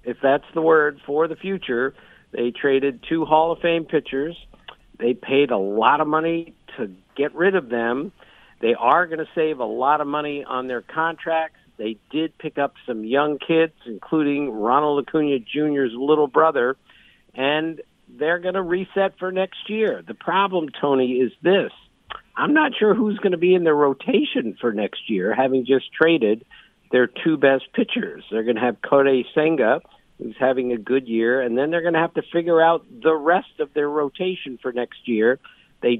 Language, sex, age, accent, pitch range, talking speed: English, male, 50-69, American, 125-165 Hz, 185 wpm